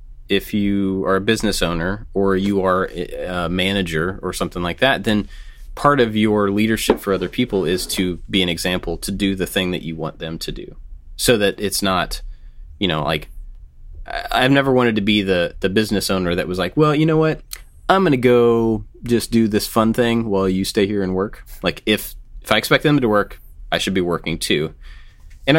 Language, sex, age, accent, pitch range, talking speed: English, male, 30-49, American, 80-105 Hz, 210 wpm